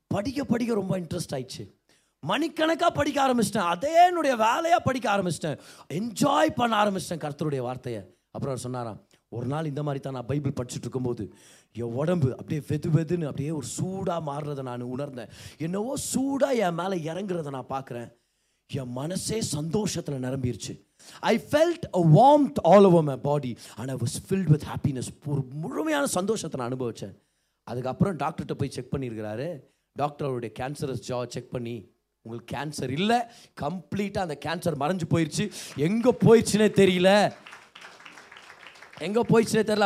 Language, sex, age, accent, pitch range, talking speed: Tamil, male, 30-49, native, 140-230 Hz, 125 wpm